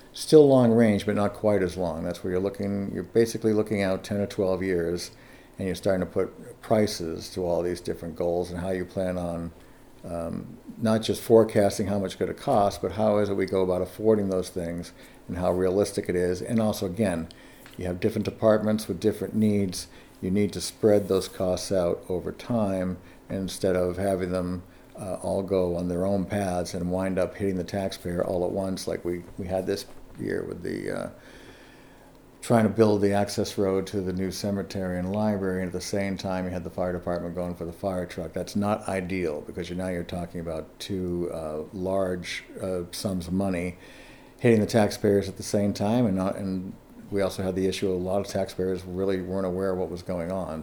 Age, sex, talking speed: 50-69, male, 210 wpm